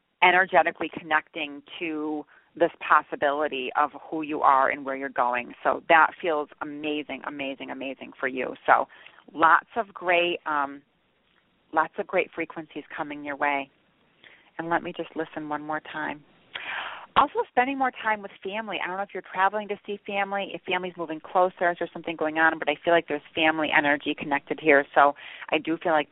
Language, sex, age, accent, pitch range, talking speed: English, female, 30-49, American, 150-180 Hz, 180 wpm